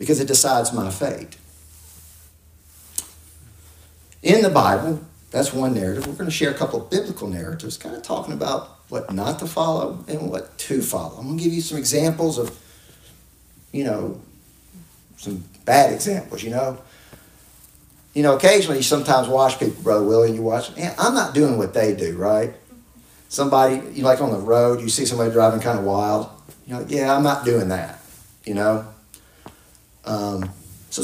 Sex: male